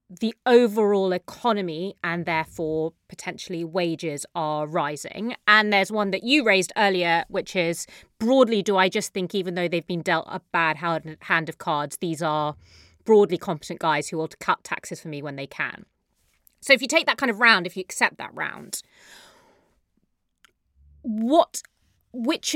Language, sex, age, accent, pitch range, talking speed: English, female, 30-49, British, 175-230 Hz, 165 wpm